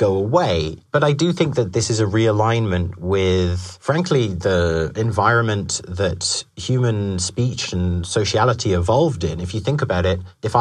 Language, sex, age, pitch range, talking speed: English, male, 30-49, 90-120 Hz, 160 wpm